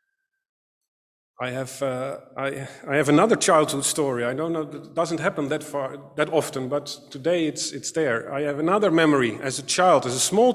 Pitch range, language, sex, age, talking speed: 140-210 Hz, English, male, 40-59, 195 wpm